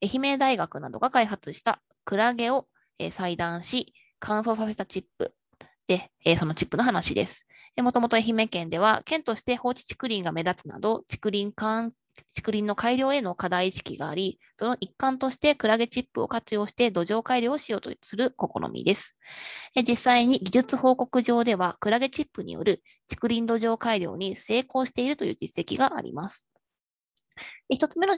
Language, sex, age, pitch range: Japanese, female, 20-39, 195-255 Hz